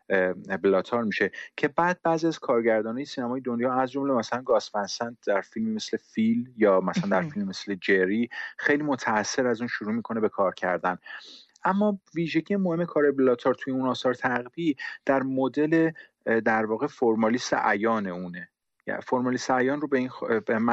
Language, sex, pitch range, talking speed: Persian, male, 105-150 Hz, 155 wpm